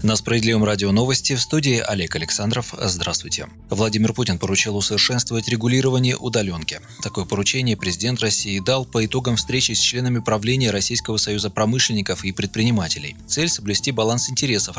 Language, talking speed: Russian, 140 wpm